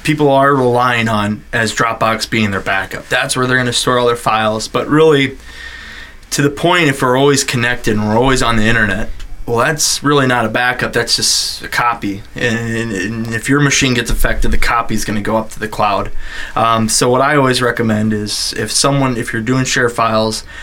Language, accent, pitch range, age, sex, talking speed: English, American, 110-125 Hz, 20-39, male, 205 wpm